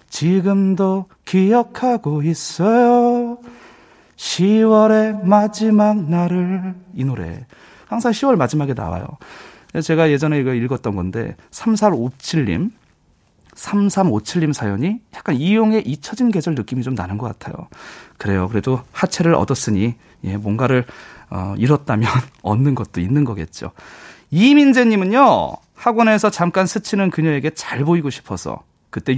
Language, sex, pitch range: Korean, male, 125-210 Hz